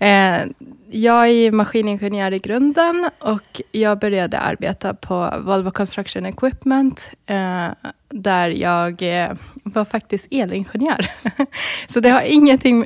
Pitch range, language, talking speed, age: 200-245 Hz, Swedish, 105 wpm, 20-39